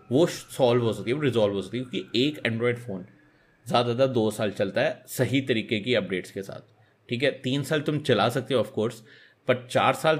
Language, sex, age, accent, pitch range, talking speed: Hindi, male, 30-49, native, 100-125 Hz, 220 wpm